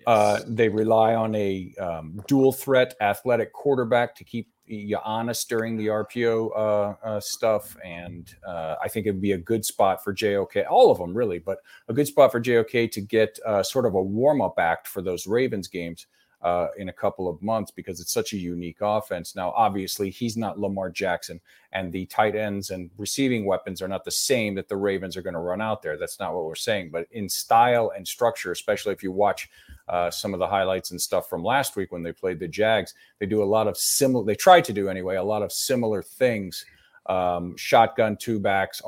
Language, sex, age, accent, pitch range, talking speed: English, male, 40-59, American, 95-120 Hz, 215 wpm